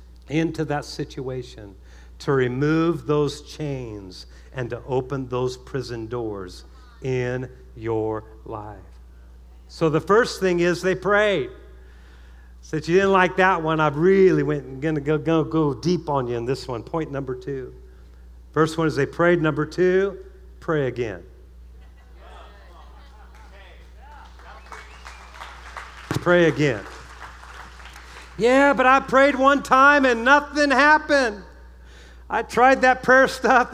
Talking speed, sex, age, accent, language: 125 wpm, male, 50-69, American, English